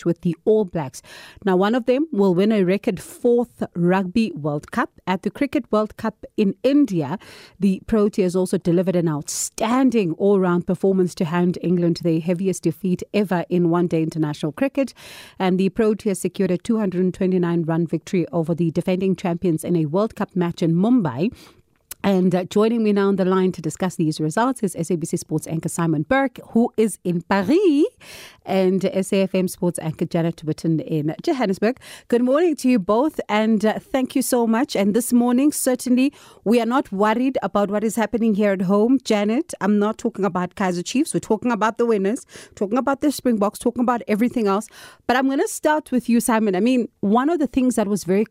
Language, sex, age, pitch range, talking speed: English, female, 40-59, 180-235 Hz, 190 wpm